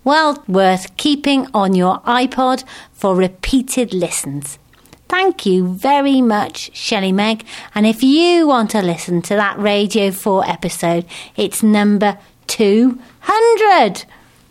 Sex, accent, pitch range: female, British, 190-250 Hz